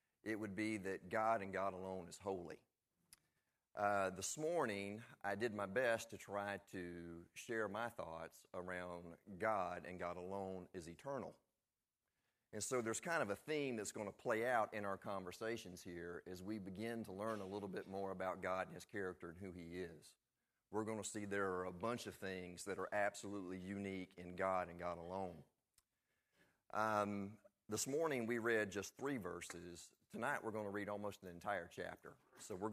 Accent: American